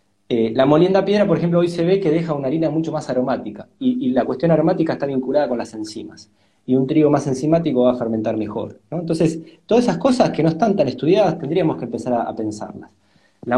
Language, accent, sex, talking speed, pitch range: Spanish, Argentinian, male, 235 wpm, 120-170 Hz